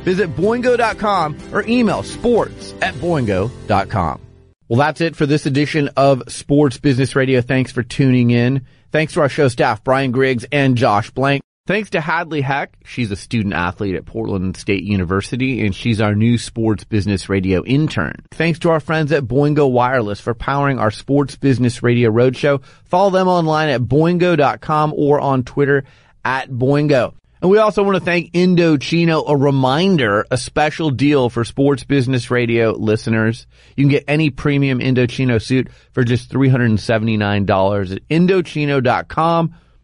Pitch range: 110-150 Hz